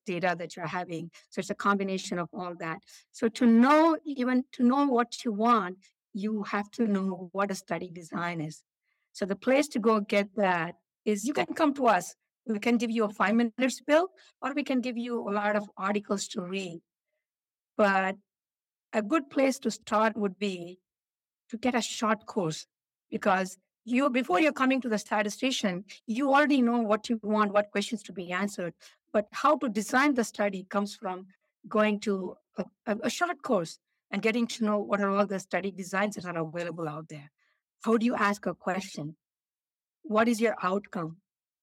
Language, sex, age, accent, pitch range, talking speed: English, female, 60-79, Indian, 190-235 Hz, 190 wpm